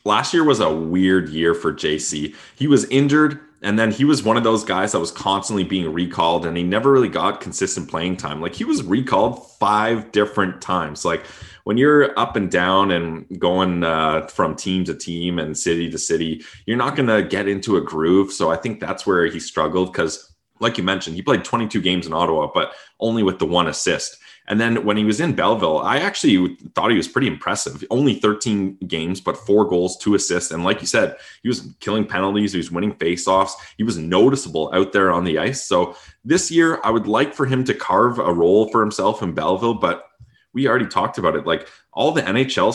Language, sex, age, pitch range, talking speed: English, male, 20-39, 85-110 Hz, 220 wpm